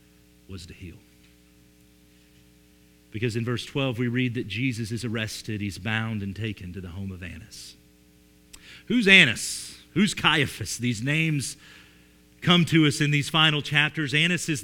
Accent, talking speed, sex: American, 150 wpm, male